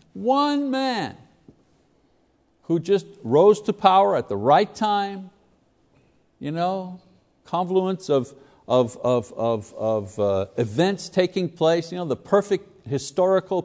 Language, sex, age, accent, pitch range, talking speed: English, male, 60-79, American, 150-215 Hz, 125 wpm